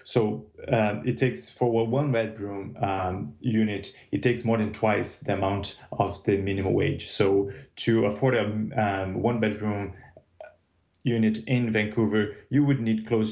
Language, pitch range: English, 100-115 Hz